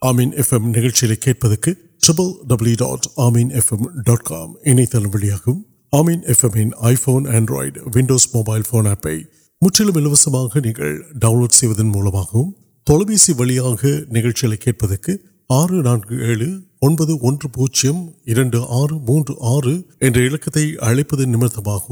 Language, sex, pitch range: Urdu, male, 120-160 Hz